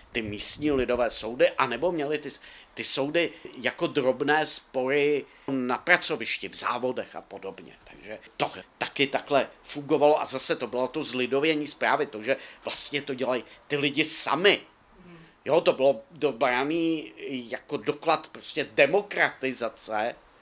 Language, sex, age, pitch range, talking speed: Czech, male, 50-69, 125-150 Hz, 135 wpm